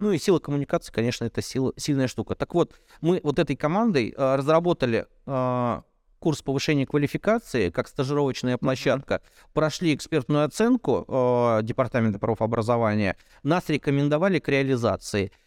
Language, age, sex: Russian, 30-49, male